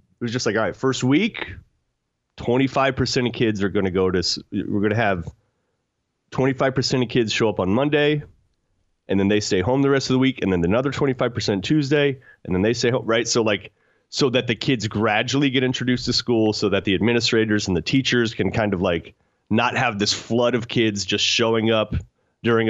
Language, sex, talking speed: English, male, 210 wpm